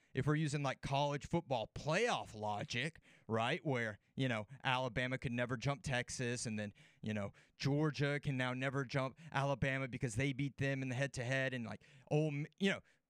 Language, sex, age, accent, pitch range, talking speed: English, male, 30-49, American, 130-170 Hz, 190 wpm